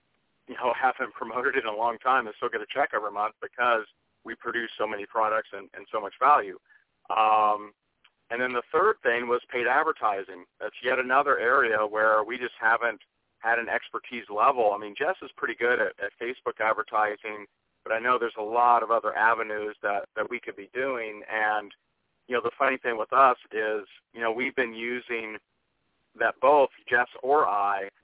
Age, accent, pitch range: 40-59, American, 105-125 Hz